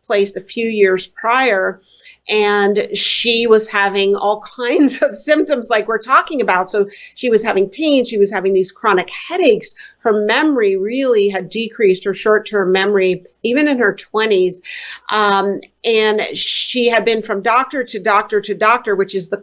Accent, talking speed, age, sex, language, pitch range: American, 160 wpm, 50-69, female, English, 200-240 Hz